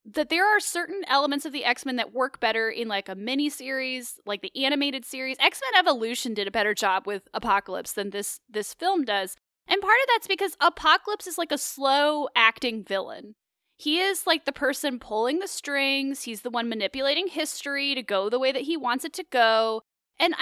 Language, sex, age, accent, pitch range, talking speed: English, female, 10-29, American, 235-325 Hz, 205 wpm